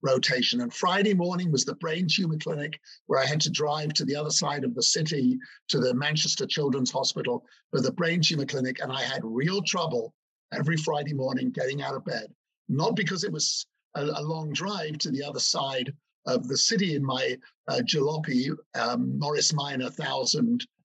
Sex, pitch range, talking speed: male, 135-175 Hz, 190 wpm